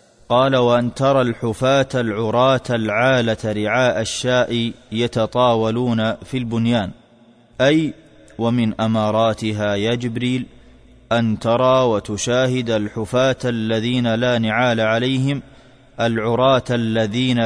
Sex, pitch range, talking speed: male, 115-130 Hz, 90 wpm